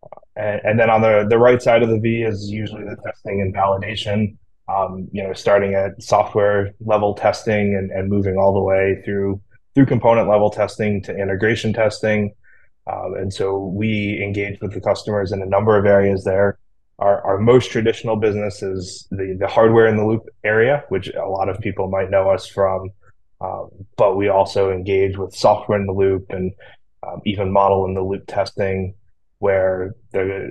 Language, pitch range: English, 95-105 Hz